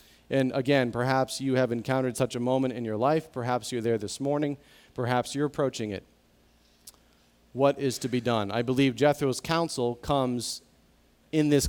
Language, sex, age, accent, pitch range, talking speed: English, male, 40-59, American, 120-145 Hz, 170 wpm